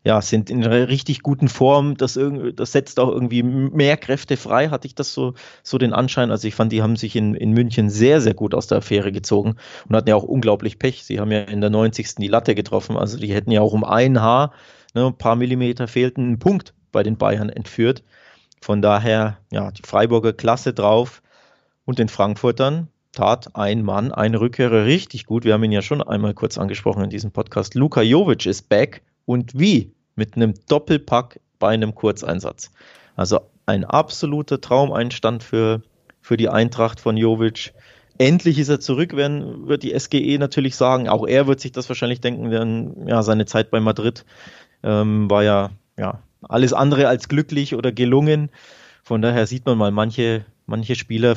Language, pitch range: German, 110-130 Hz